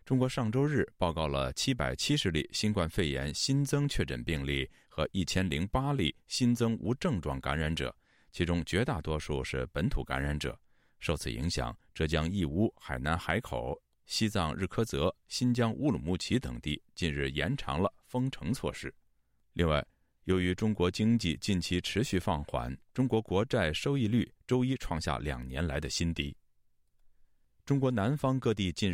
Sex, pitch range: male, 75-115 Hz